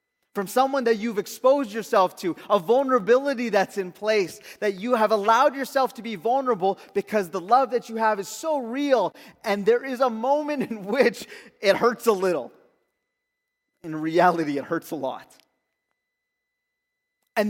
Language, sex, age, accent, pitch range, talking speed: English, male, 30-49, American, 155-220 Hz, 160 wpm